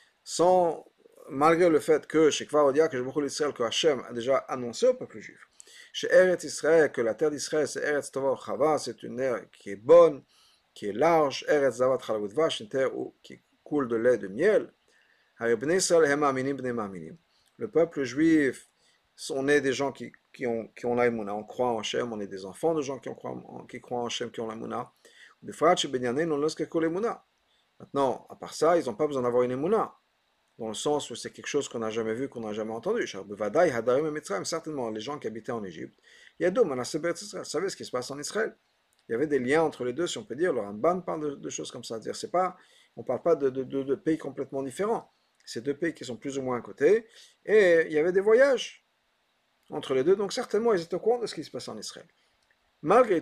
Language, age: French, 50-69